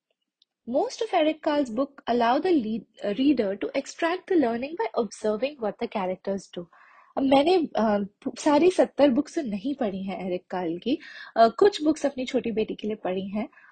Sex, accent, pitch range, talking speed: female, native, 215-315 Hz, 190 wpm